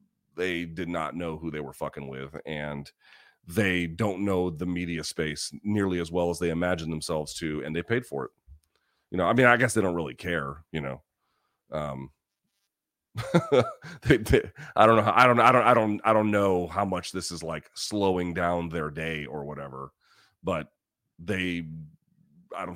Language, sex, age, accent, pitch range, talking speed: English, male, 30-49, American, 75-95 Hz, 190 wpm